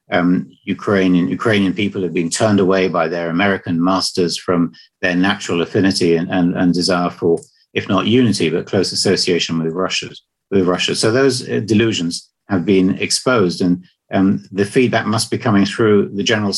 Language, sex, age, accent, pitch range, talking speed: English, male, 50-69, British, 90-105 Hz, 175 wpm